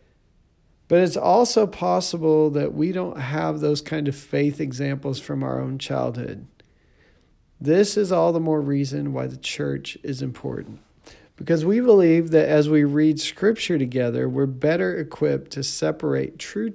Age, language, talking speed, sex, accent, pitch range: 40-59, English, 155 wpm, male, American, 120-155 Hz